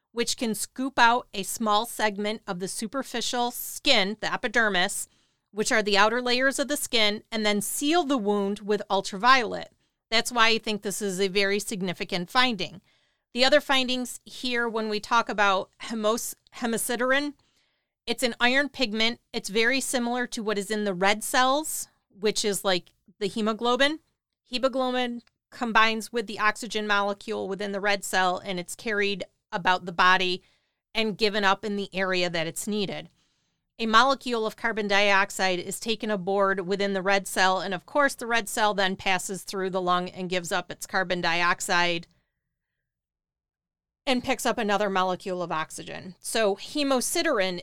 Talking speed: 165 wpm